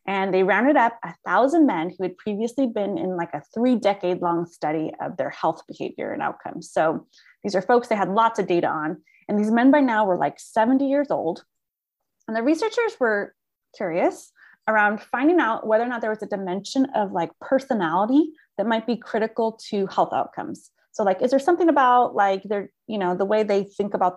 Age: 20-39